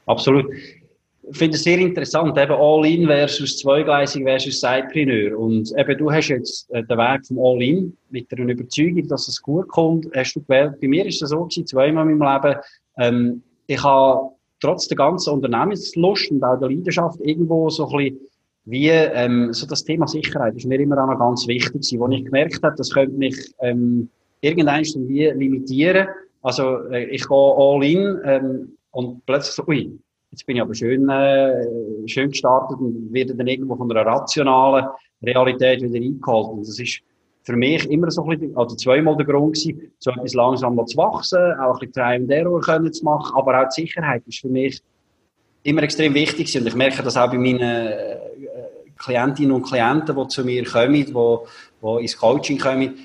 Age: 30-49